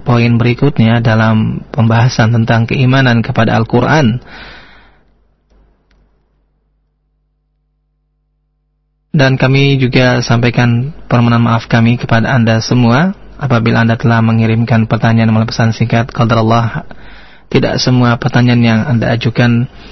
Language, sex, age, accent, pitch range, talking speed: Indonesian, male, 30-49, native, 115-130 Hz, 95 wpm